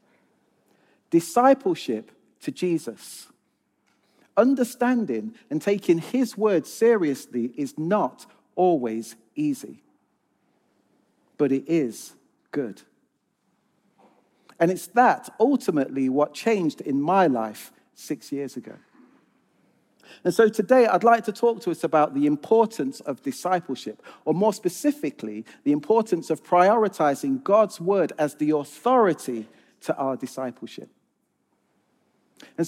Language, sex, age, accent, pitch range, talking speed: English, male, 50-69, British, 145-225 Hz, 110 wpm